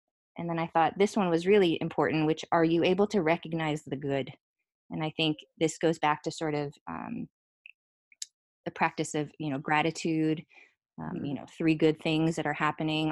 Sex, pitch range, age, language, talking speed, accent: female, 150-170 Hz, 20-39, English, 190 wpm, American